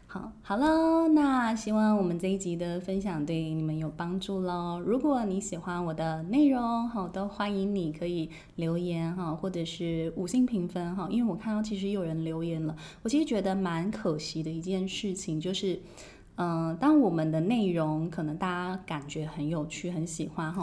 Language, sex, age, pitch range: Chinese, female, 20-39, 165-210 Hz